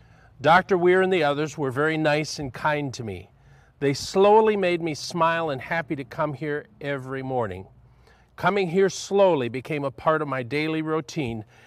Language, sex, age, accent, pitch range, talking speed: English, male, 50-69, American, 110-150 Hz, 175 wpm